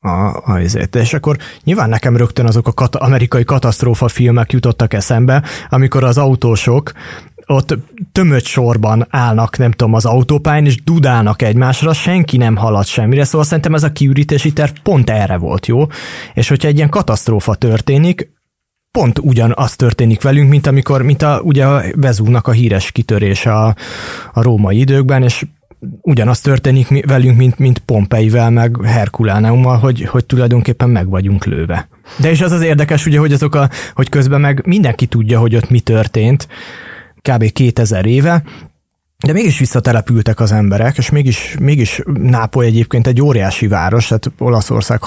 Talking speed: 155 wpm